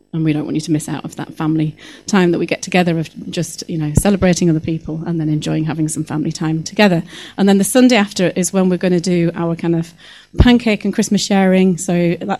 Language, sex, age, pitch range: English, female, 30-49, 170-195 Hz